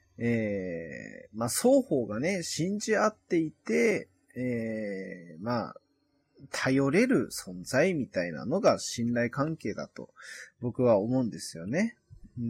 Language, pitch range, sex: Japanese, 105-165 Hz, male